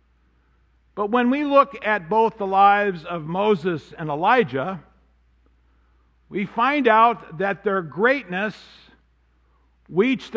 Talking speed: 110 wpm